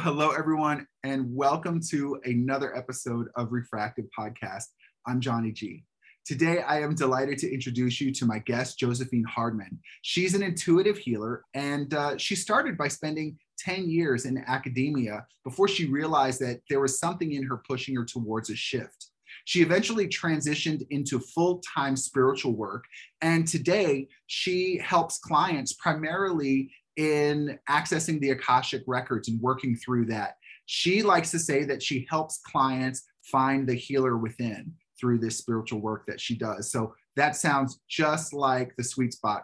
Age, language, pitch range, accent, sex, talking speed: 30-49, English, 125-155 Hz, American, male, 155 wpm